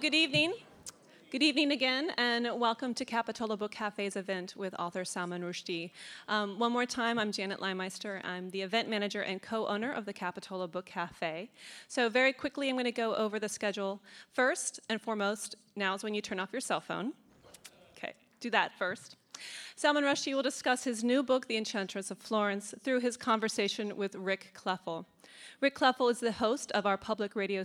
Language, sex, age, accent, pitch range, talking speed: English, female, 30-49, American, 190-235 Hz, 185 wpm